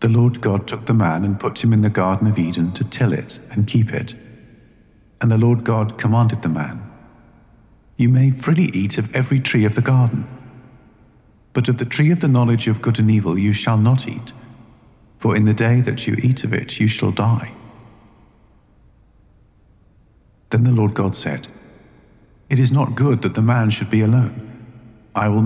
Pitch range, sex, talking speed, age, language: 100-115 Hz, male, 190 wpm, 50-69, English